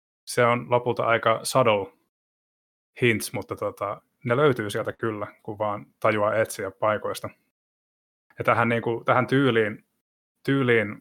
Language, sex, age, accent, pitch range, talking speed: Finnish, male, 20-39, native, 100-120 Hz, 125 wpm